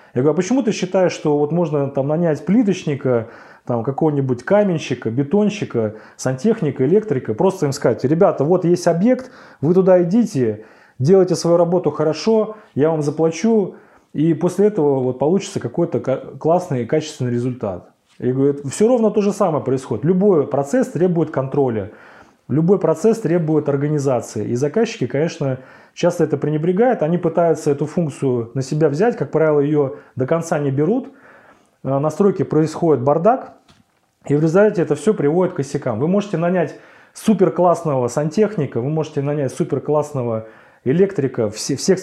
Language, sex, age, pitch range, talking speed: Russian, male, 30-49, 135-180 Hz, 150 wpm